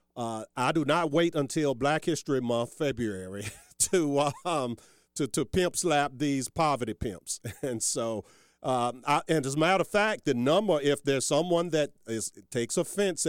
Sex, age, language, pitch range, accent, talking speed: male, 50-69, English, 110-155 Hz, American, 170 wpm